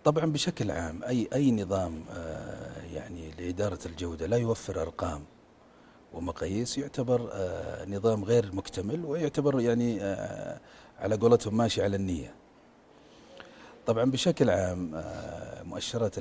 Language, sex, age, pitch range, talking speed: Arabic, male, 40-59, 90-115 Hz, 120 wpm